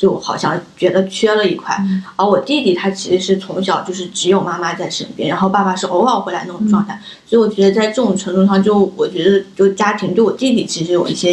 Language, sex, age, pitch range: Chinese, female, 20-39, 190-215 Hz